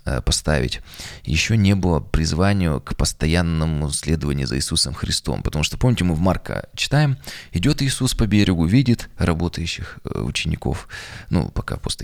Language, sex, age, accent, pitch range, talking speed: Russian, male, 20-39, native, 80-100 Hz, 140 wpm